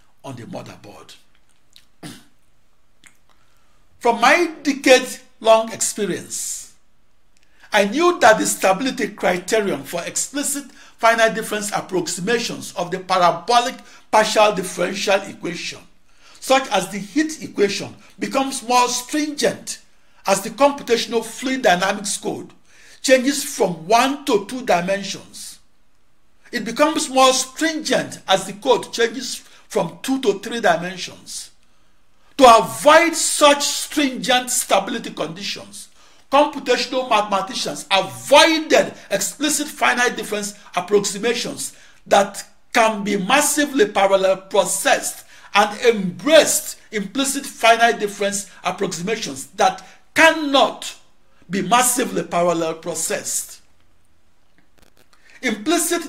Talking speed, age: 95 wpm, 50-69